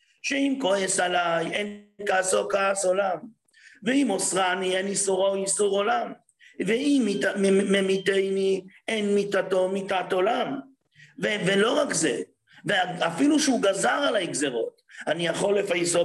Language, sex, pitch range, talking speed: English, male, 190-245 Hz, 125 wpm